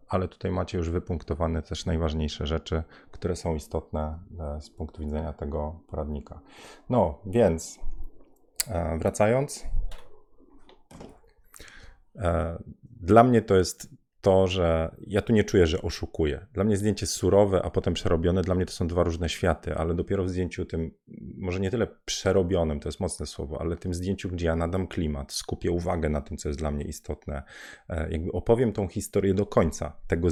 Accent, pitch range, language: native, 80-100 Hz, Polish